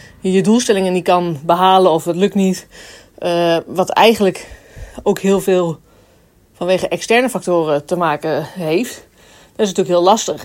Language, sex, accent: Dutch, female, Dutch